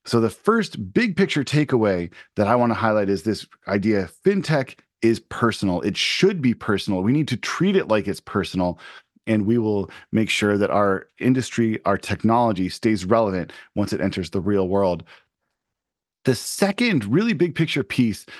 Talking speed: 170 wpm